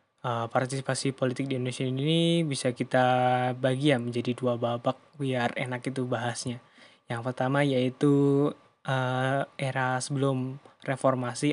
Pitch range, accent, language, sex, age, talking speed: 130-145 Hz, native, Indonesian, male, 20-39, 125 wpm